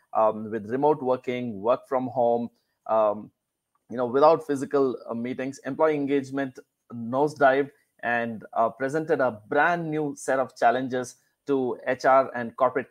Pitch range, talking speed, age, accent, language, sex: 120-145 Hz, 140 wpm, 20-39, Indian, English, male